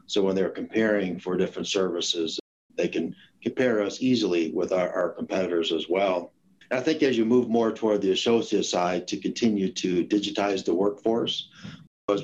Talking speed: 175 wpm